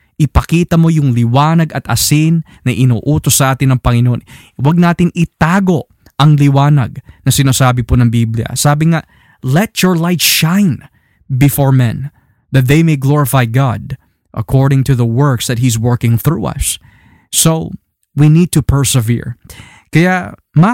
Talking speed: 150 wpm